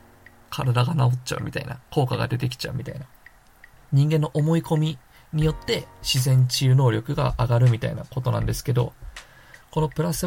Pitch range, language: 120-145 Hz, Japanese